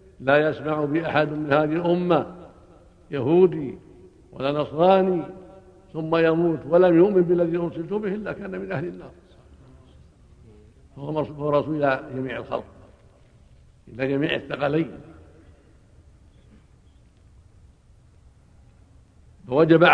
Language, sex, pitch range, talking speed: Arabic, male, 130-170 Hz, 95 wpm